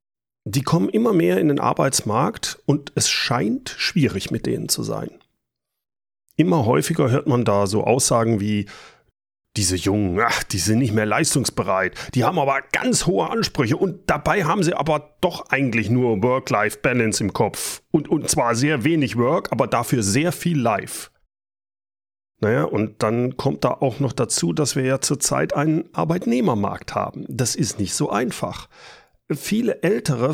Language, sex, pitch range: German, male, 110-150 Hz